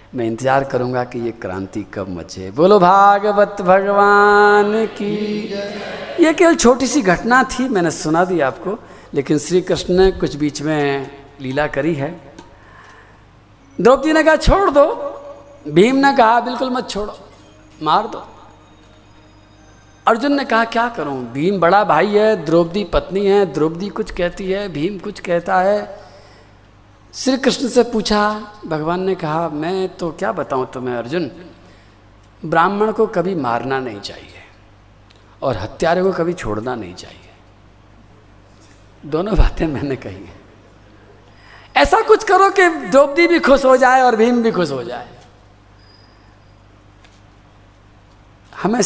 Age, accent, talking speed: 50-69, native, 140 wpm